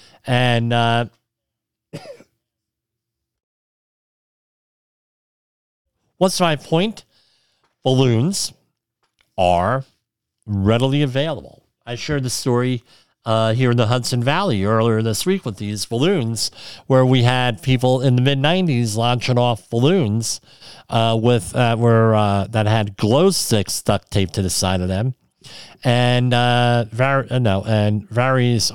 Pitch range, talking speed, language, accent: 105-130 Hz, 120 wpm, English, American